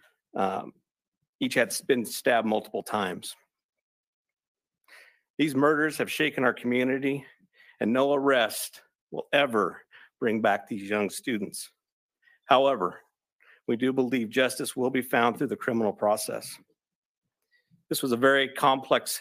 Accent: American